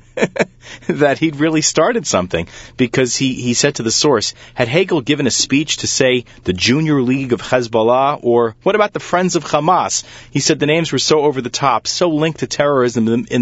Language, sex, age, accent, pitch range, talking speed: English, male, 30-49, American, 100-135 Hz, 200 wpm